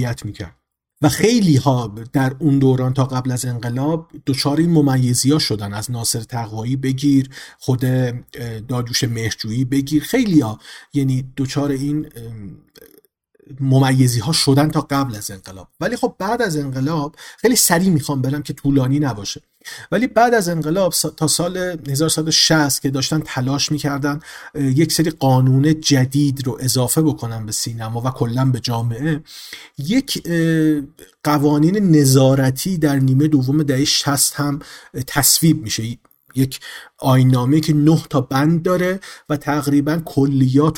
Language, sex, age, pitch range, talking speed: Persian, male, 40-59, 130-160 Hz, 140 wpm